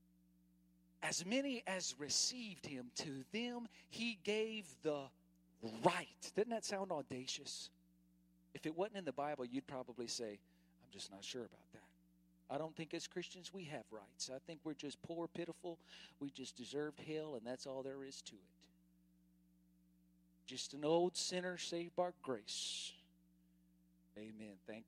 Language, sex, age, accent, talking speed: English, male, 40-59, American, 155 wpm